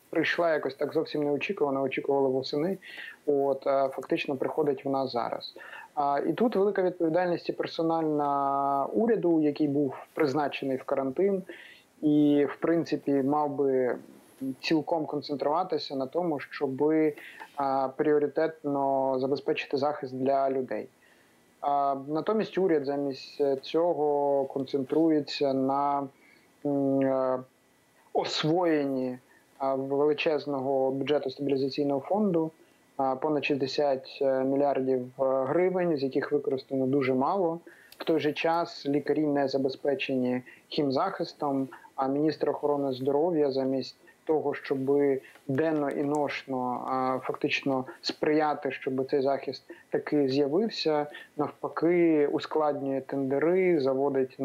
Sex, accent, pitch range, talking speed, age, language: male, native, 135-150 Hz, 100 wpm, 30-49, Ukrainian